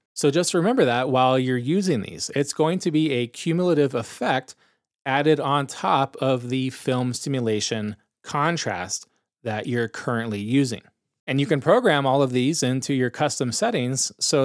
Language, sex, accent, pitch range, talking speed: English, male, American, 120-150 Hz, 160 wpm